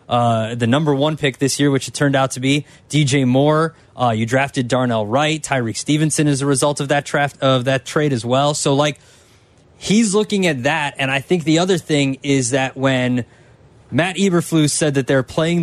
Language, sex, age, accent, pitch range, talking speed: English, male, 20-39, American, 120-150 Hz, 205 wpm